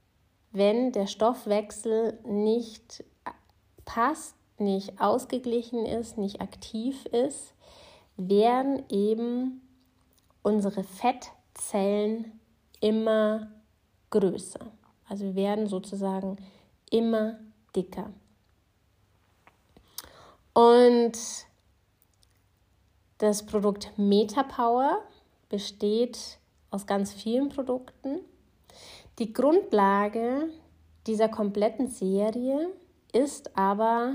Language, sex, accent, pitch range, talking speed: German, female, German, 195-235 Hz, 65 wpm